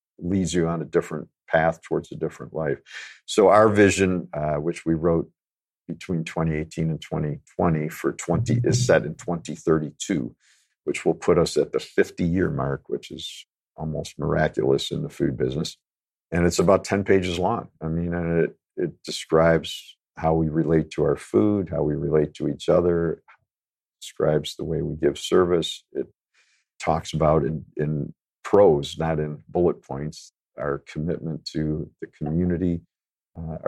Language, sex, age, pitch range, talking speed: English, male, 50-69, 75-85 Hz, 160 wpm